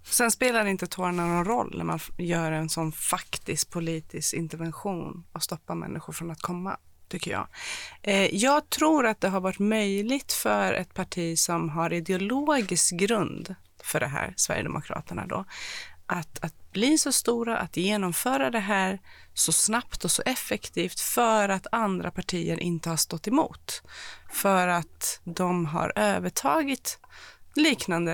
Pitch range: 160-205 Hz